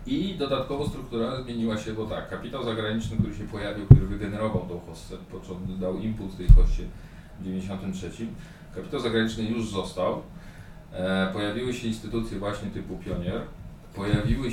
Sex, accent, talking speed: male, native, 145 wpm